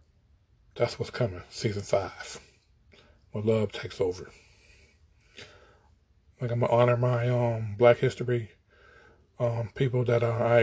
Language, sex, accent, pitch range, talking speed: English, male, American, 100-125 Hz, 120 wpm